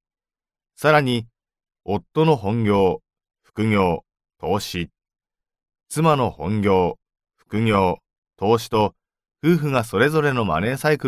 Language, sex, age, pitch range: Japanese, male, 40-59, 100-140 Hz